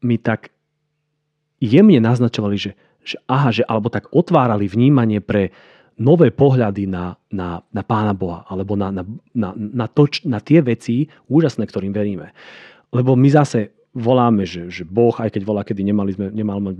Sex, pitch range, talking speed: male, 105-130 Hz, 145 wpm